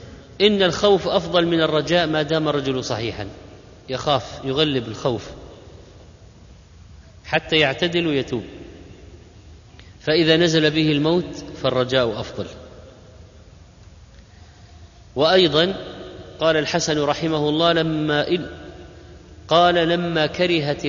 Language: Arabic